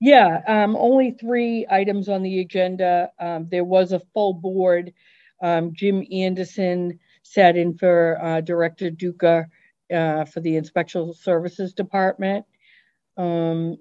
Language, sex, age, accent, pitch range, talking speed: English, female, 50-69, American, 155-185 Hz, 130 wpm